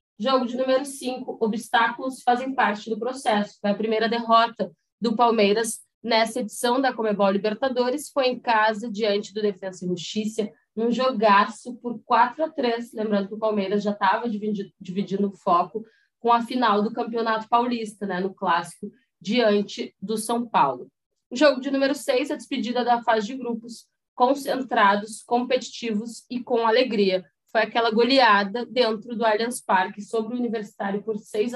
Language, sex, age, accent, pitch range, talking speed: Portuguese, female, 20-39, Brazilian, 210-255 Hz, 160 wpm